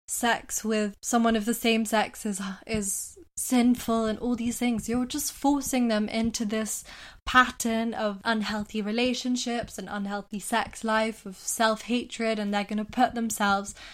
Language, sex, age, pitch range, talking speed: English, female, 10-29, 205-235 Hz, 155 wpm